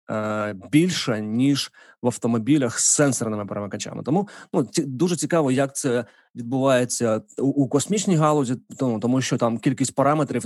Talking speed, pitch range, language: 145 wpm, 115-135 Hz, Ukrainian